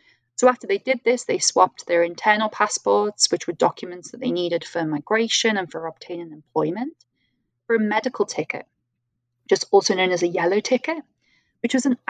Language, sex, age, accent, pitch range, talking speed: English, female, 10-29, British, 180-240 Hz, 180 wpm